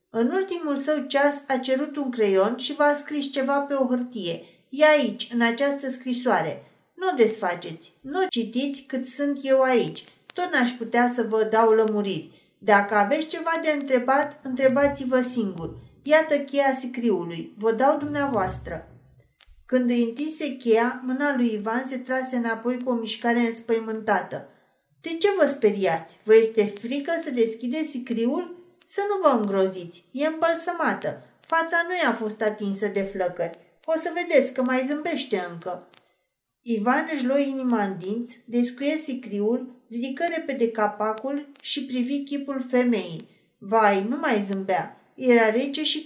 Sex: female